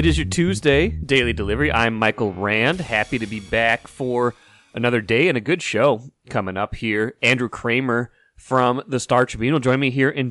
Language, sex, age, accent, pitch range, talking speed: English, male, 30-49, American, 105-130 Hz, 200 wpm